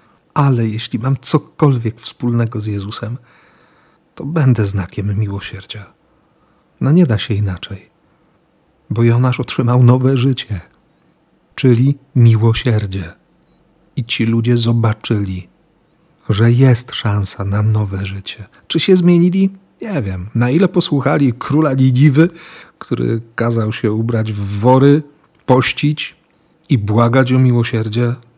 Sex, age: male, 40-59